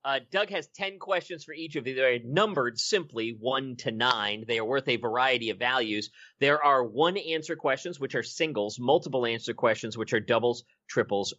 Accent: American